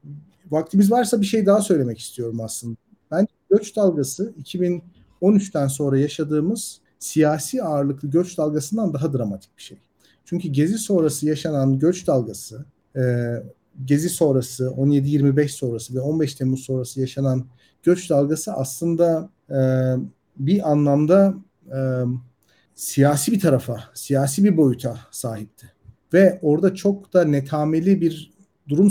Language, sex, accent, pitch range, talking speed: Turkish, male, native, 130-175 Hz, 120 wpm